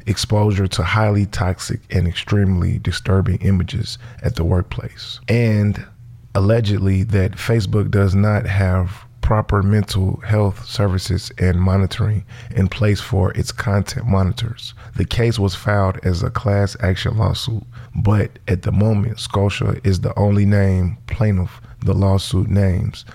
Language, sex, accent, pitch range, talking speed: English, male, American, 95-115 Hz, 135 wpm